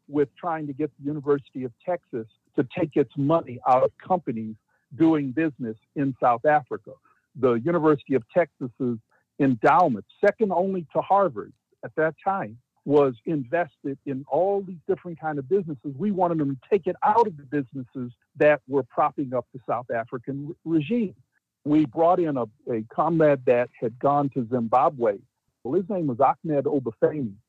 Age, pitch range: 50-69, 125-160 Hz